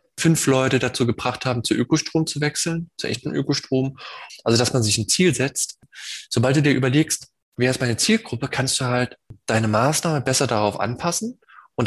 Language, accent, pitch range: German, German, 115-155 Hz